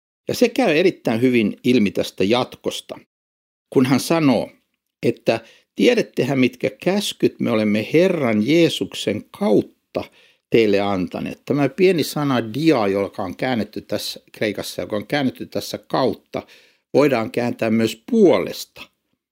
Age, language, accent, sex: 60-79, Finnish, native, male